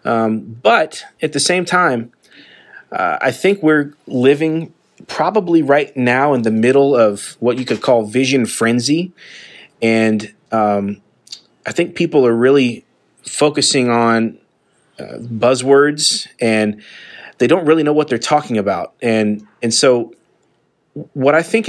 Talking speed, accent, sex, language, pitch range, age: 140 wpm, American, male, English, 115-150 Hz, 30-49